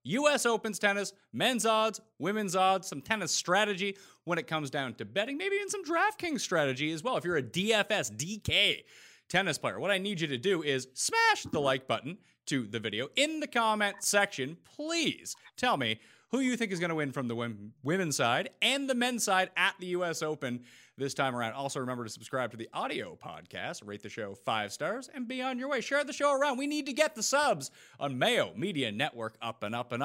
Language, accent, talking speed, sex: English, American, 220 wpm, male